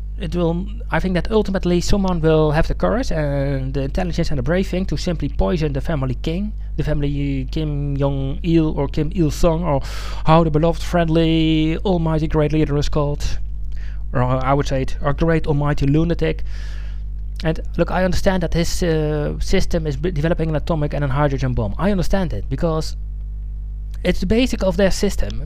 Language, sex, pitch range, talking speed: English, male, 125-175 Hz, 200 wpm